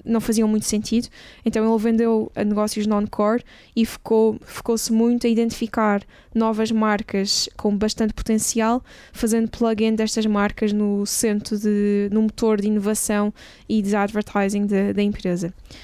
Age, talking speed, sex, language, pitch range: 10-29, 140 wpm, female, Portuguese, 210-230 Hz